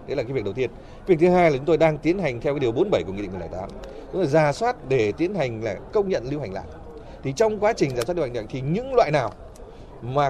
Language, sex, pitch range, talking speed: Vietnamese, male, 125-185 Hz, 290 wpm